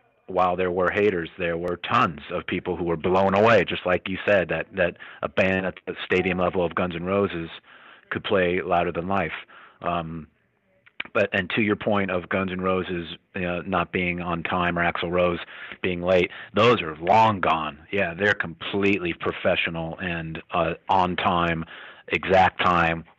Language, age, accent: English, 40-59, American